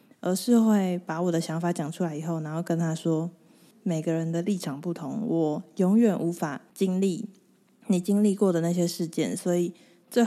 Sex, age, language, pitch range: female, 20-39, Chinese, 160-195 Hz